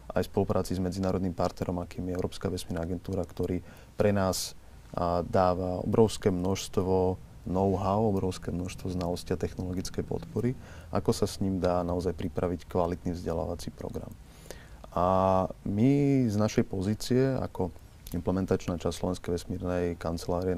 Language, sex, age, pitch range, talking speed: Slovak, male, 30-49, 90-105 Hz, 135 wpm